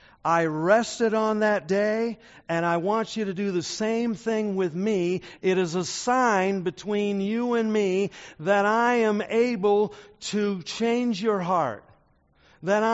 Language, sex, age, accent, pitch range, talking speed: English, male, 50-69, American, 150-205 Hz, 155 wpm